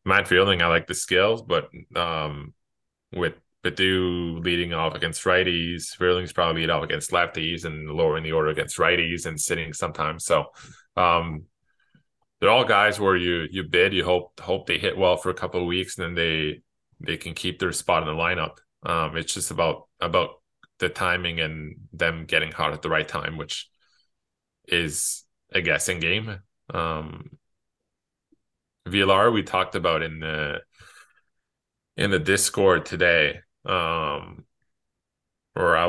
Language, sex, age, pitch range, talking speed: English, male, 20-39, 80-90 Hz, 155 wpm